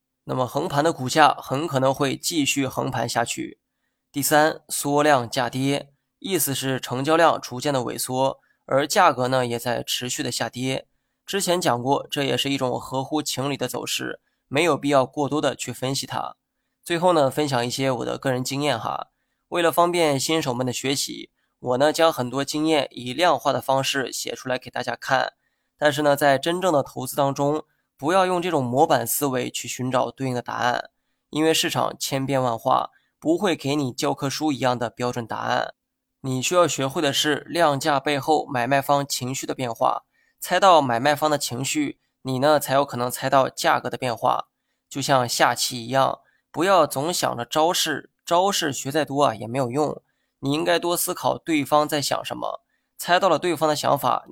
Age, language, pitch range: 20-39, Chinese, 130-150 Hz